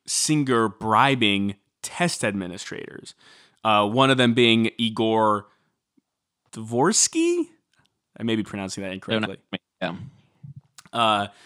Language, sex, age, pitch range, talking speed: English, male, 20-39, 105-130 Hz, 90 wpm